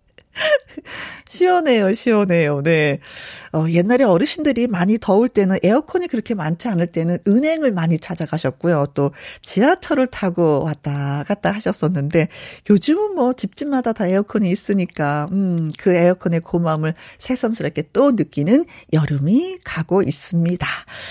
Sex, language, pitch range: female, Korean, 170-270 Hz